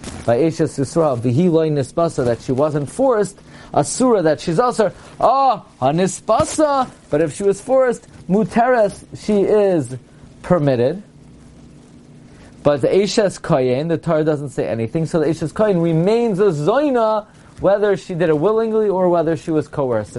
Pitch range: 145-200 Hz